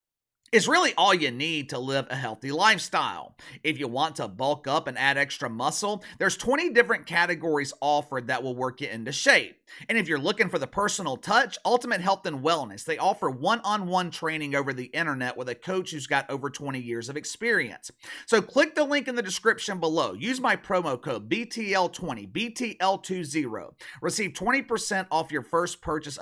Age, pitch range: 30-49, 140-205 Hz